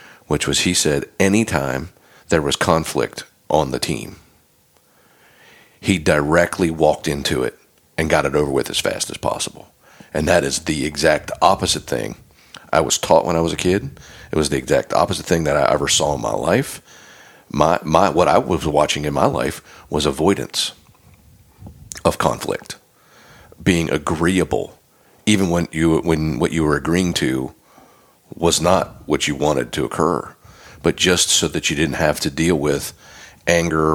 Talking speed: 170 wpm